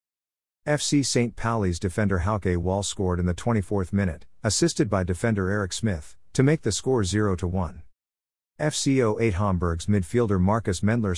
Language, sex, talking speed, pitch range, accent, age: English, male, 145 wpm, 90-115 Hz, American, 50-69